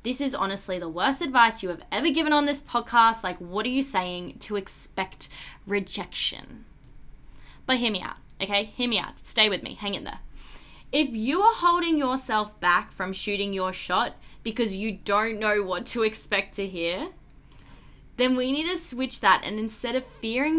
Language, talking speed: English, 185 wpm